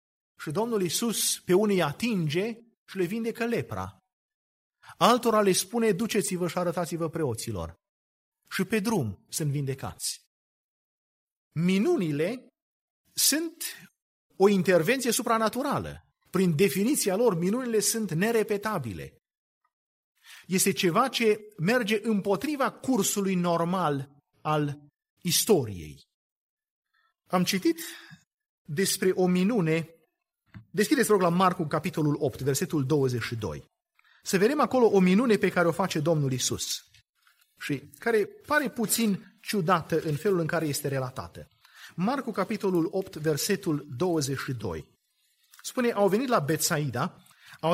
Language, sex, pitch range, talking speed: Romanian, male, 160-225 Hz, 110 wpm